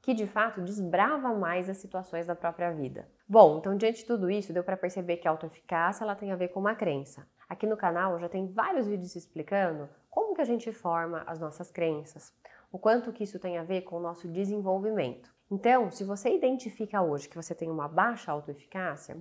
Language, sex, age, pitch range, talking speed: Portuguese, female, 20-39, 170-220 Hz, 210 wpm